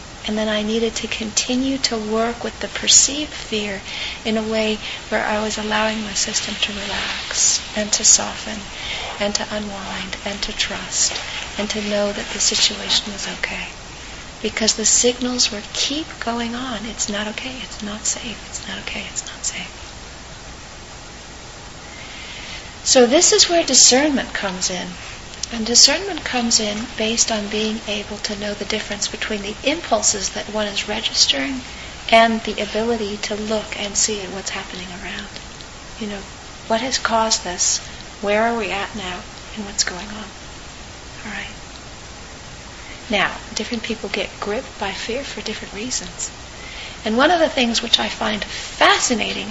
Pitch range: 210-235 Hz